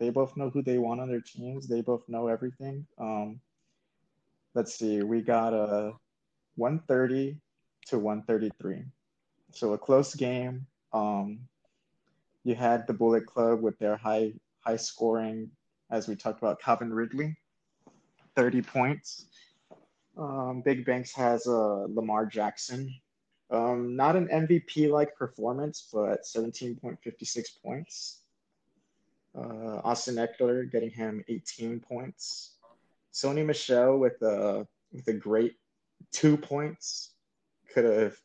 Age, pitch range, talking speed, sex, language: 20-39, 110-135 Hz, 120 wpm, male, English